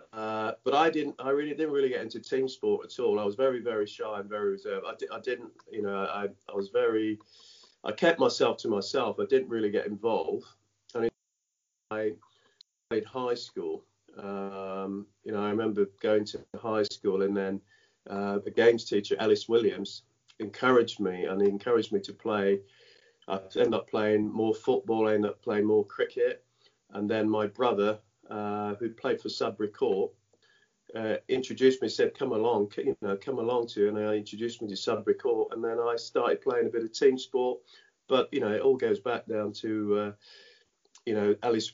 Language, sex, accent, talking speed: English, male, British, 195 wpm